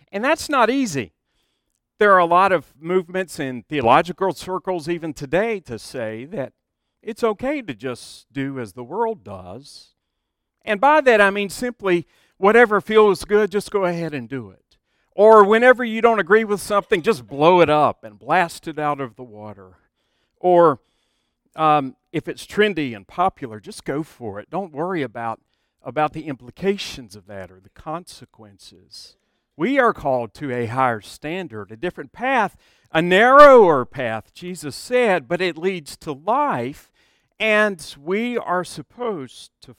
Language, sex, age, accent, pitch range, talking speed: English, male, 50-69, American, 130-205 Hz, 160 wpm